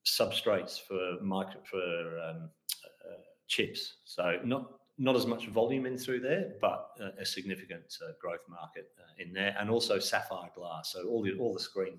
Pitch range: 95-130 Hz